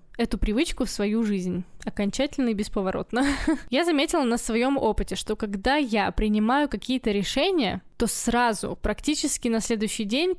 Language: Russian